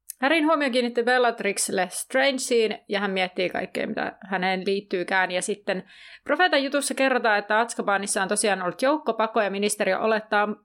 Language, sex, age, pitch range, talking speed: Finnish, female, 30-49, 190-230 Hz, 145 wpm